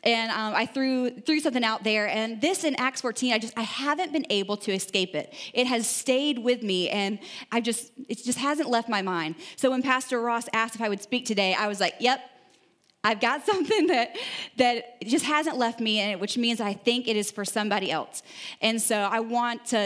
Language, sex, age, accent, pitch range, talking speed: English, female, 20-39, American, 220-270 Hz, 225 wpm